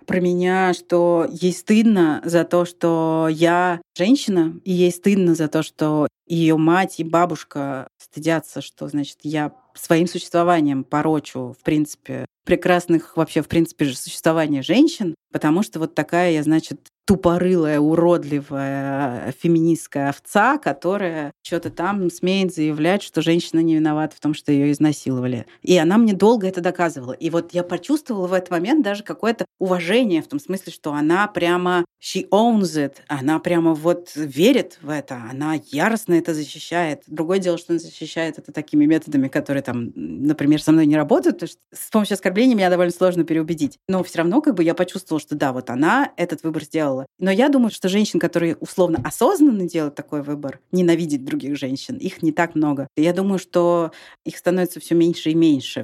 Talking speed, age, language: 170 wpm, 30-49, Russian